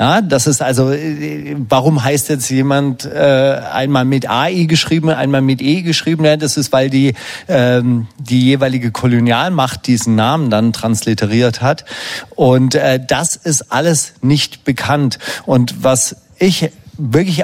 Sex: male